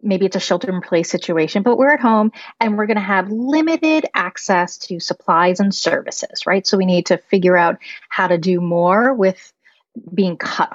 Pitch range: 170-230 Hz